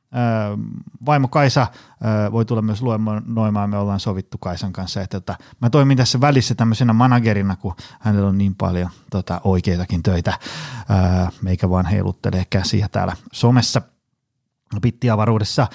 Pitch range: 100-130 Hz